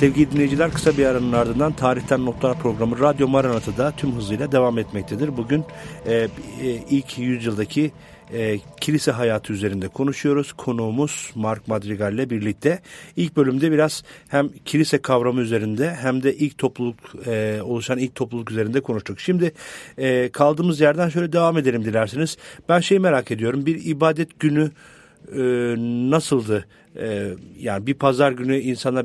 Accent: Turkish